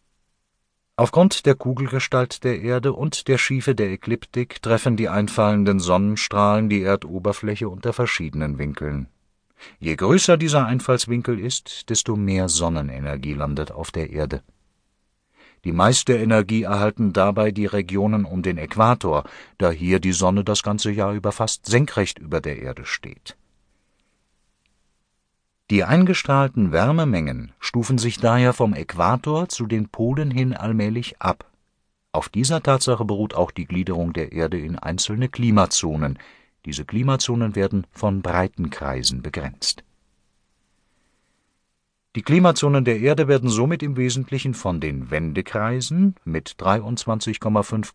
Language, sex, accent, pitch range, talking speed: German, male, German, 90-125 Hz, 125 wpm